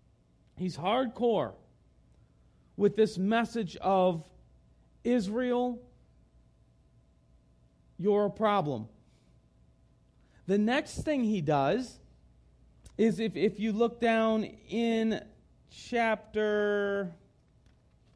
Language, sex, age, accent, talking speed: English, male, 40-59, American, 75 wpm